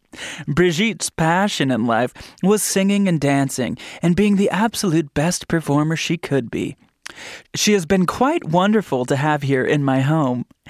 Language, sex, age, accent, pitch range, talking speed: English, male, 20-39, American, 145-225 Hz, 155 wpm